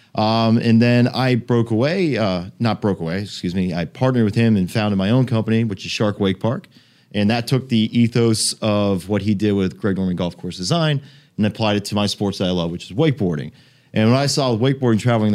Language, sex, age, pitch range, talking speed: English, male, 30-49, 100-120 Hz, 230 wpm